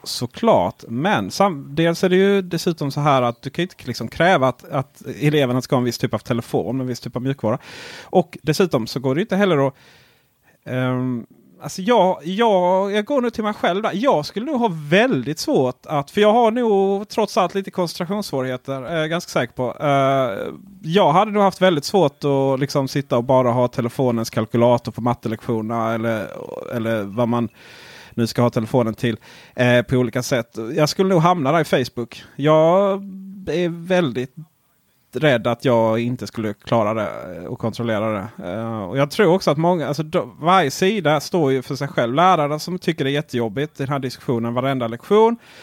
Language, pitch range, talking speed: Swedish, 125-175 Hz, 195 wpm